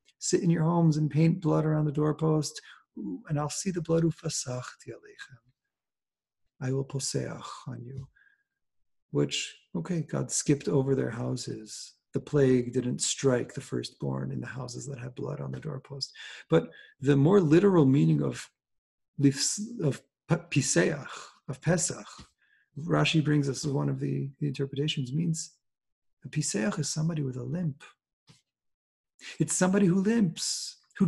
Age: 40-59